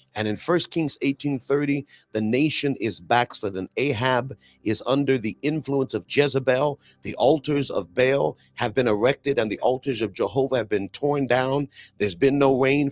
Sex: male